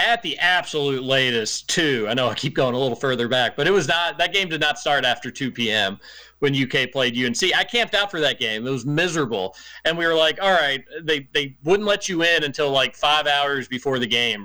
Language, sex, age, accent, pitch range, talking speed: English, male, 30-49, American, 145-205 Hz, 240 wpm